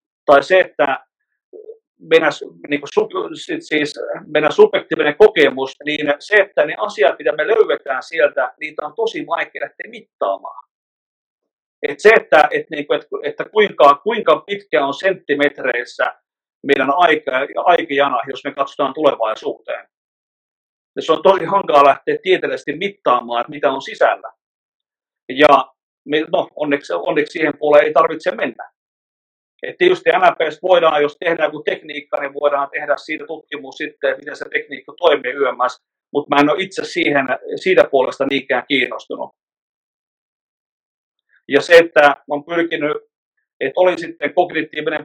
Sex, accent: male, native